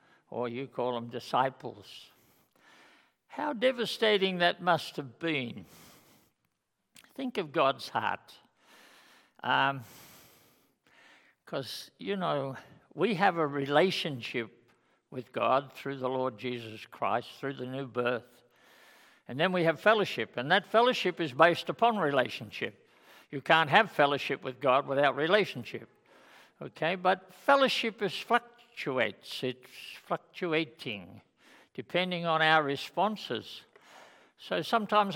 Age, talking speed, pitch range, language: 60-79, 115 wpm, 130-180 Hz, English